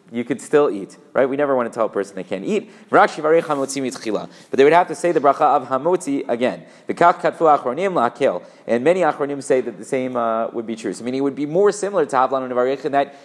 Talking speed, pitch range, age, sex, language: 220 wpm, 125-165 Hz, 30-49, male, English